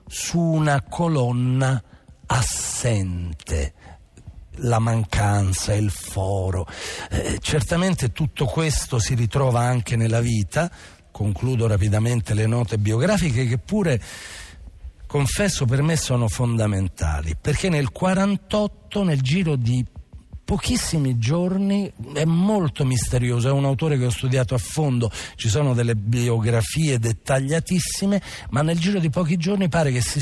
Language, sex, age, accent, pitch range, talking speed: Italian, male, 50-69, native, 105-150 Hz, 125 wpm